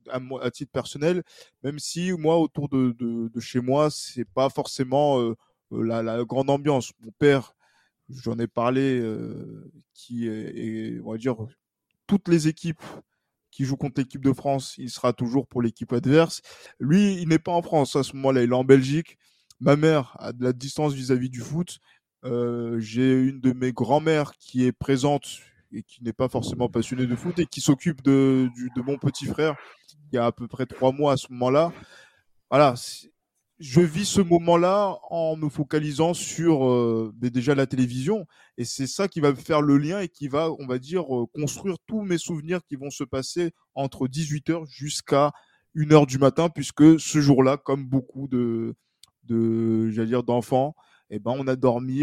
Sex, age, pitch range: male, 20-39, 125-155 Hz